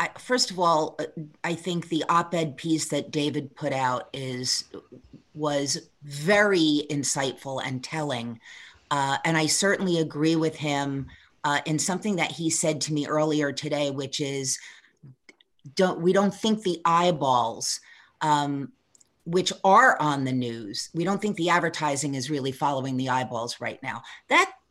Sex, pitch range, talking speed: female, 145-190 Hz, 150 wpm